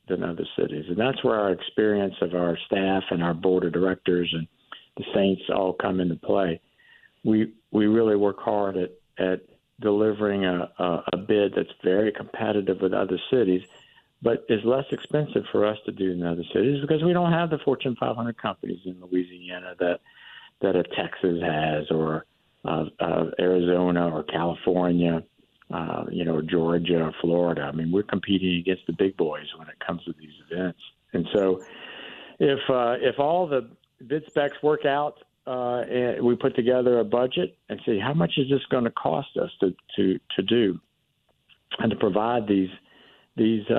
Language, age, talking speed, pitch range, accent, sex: English, 50-69, 175 wpm, 90-115 Hz, American, male